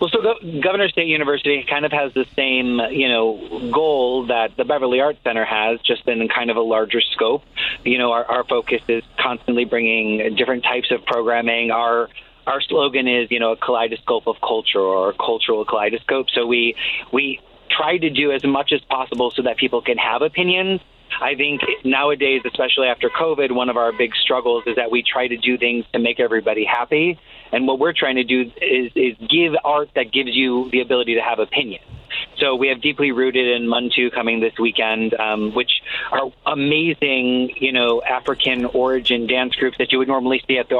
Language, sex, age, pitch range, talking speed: English, male, 30-49, 120-140 Hz, 200 wpm